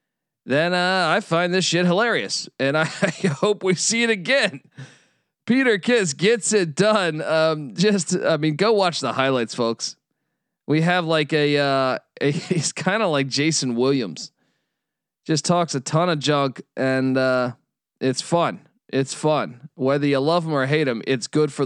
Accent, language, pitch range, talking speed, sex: American, English, 140-175 Hz, 170 wpm, male